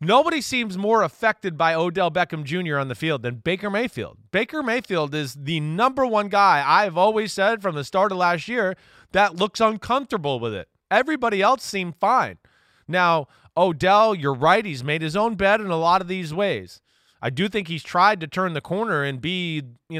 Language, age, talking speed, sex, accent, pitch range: English, 30-49, 200 wpm, male, American, 145-200 Hz